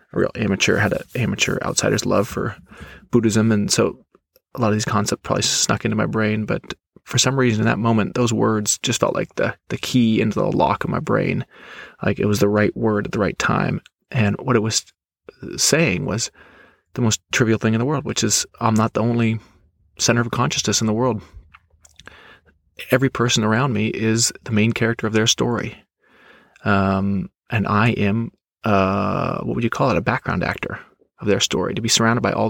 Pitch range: 105-120 Hz